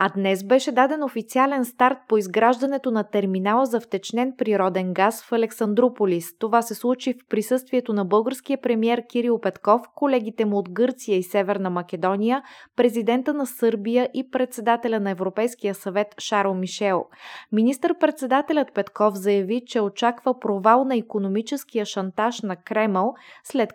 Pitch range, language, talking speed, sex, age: 200-250 Hz, Bulgarian, 140 wpm, female, 20-39